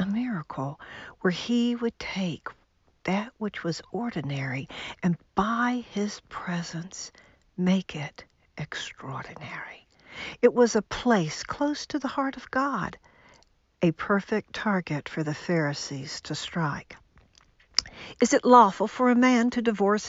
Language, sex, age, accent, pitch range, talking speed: English, female, 60-79, American, 170-240 Hz, 130 wpm